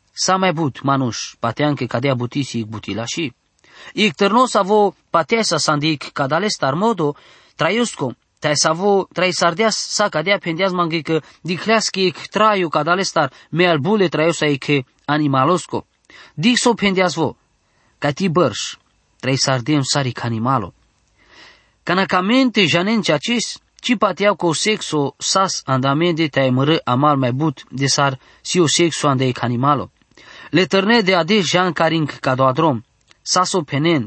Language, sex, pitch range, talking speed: English, male, 135-195 Hz, 165 wpm